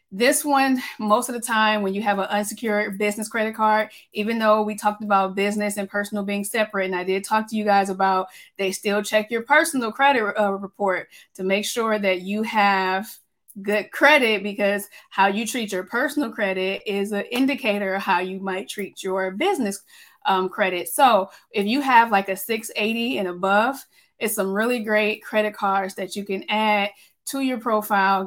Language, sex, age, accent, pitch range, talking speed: English, female, 20-39, American, 195-225 Hz, 190 wpm